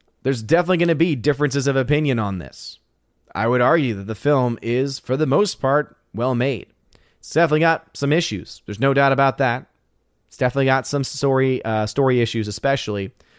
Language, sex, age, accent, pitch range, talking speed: English, male, 30-49, American, 115-140 Hz, 190 wpm